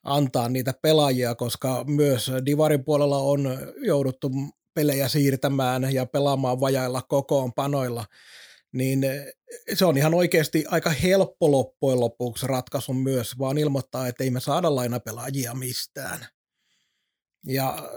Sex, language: male, Finnish